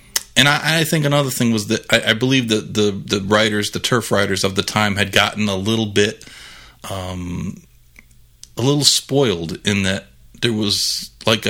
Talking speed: 185 wpm